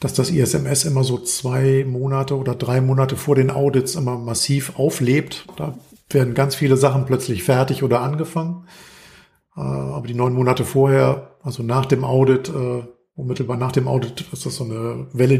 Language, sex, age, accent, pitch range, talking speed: German, male, 50-69, German, 120-140 Hz, 170 wpm